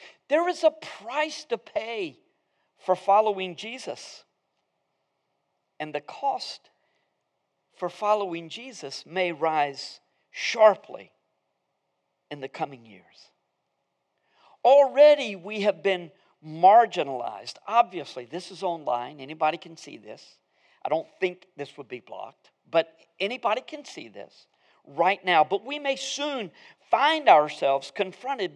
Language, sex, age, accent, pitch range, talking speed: English, male, 50-69, American, 165-255 Hz, 120 wpm